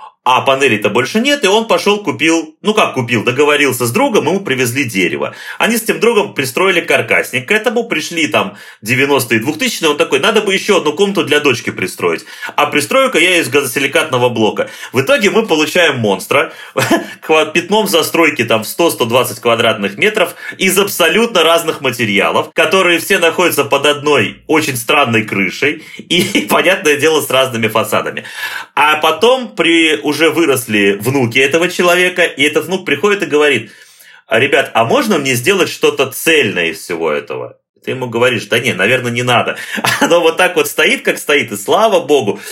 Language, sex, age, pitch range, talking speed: Russian, male, 30-49, 115-180 Hz, 165 wpm